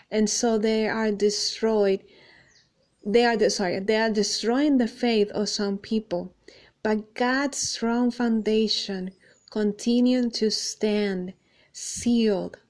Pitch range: 205-235 Hz